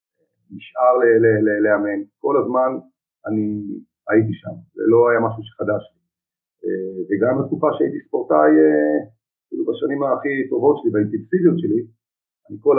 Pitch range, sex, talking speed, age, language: 110-160 Hz, male, 125 wpm, 50-69, Hebrew